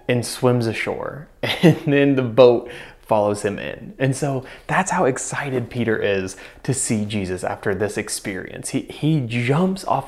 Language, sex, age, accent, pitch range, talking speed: English, male, 20-39, American, 110-140 Hz, 160 wpm